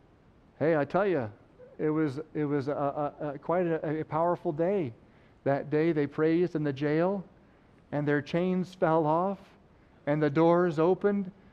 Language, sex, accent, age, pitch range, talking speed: English, male, American, 50-69, 155-200 Hz, 165 wpm